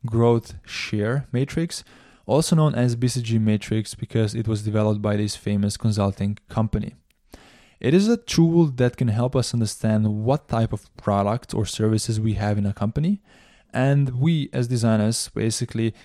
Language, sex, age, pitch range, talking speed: English, male, 20-39, 110-130 Hz, 155 wpm